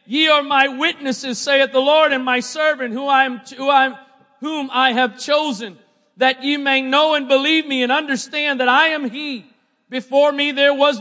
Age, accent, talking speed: 40-59, American, 190 wpm